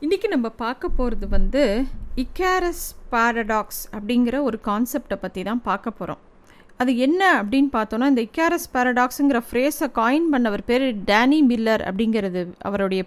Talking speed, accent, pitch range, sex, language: 135 wpm, native, 220-275 Hz, female, Tamil